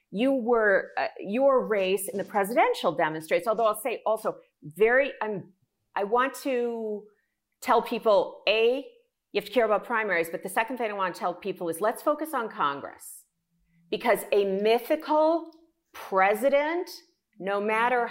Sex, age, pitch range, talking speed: female, 40-59, 195-275 Hz, 155 wpm